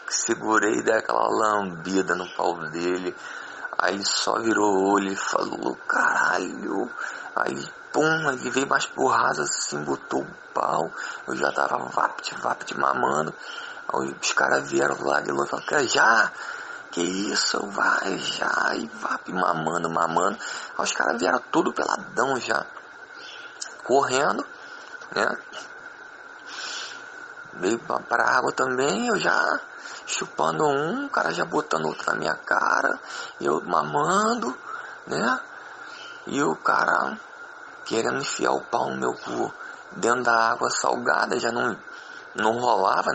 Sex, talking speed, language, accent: male, 125 wpm, Portuguese, Brazilian